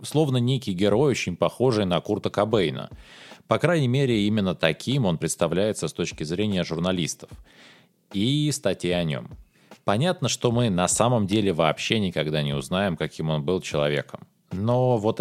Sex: male